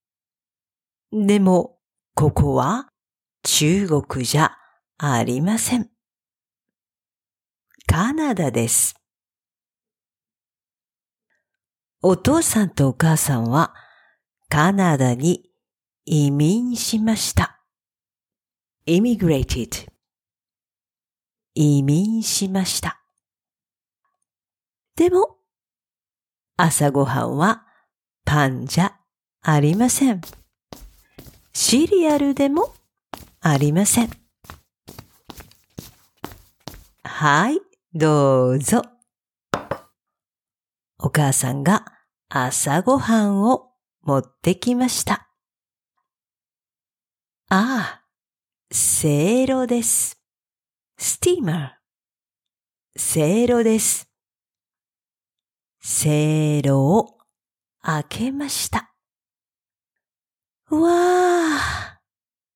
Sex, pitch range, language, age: female, 140-235 Hz, English, 50-69